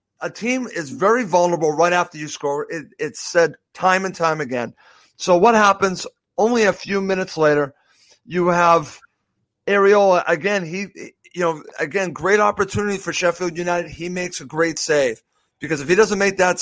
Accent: American